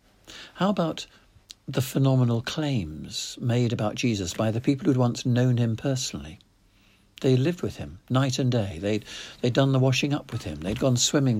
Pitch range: 100-125 Hz